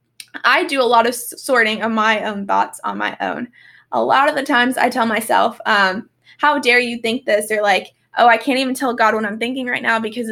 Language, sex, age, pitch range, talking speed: English, female, 10-29, 220-275 Hz, 240 wpm